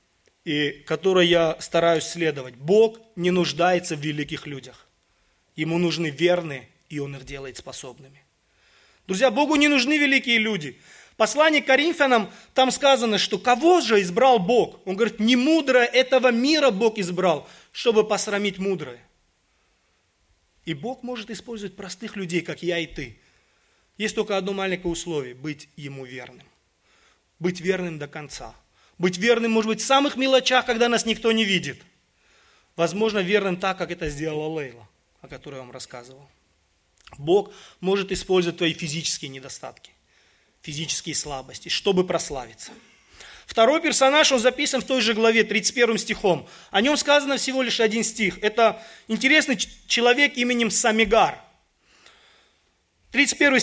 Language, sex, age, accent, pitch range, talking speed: Russian, male, 30-49, native, 155-240 Hz, 140 wpm